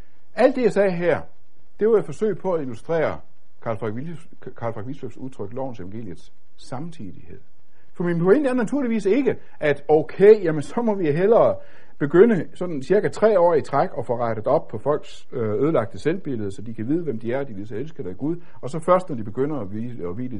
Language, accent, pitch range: Danish, native, 105-165 Hz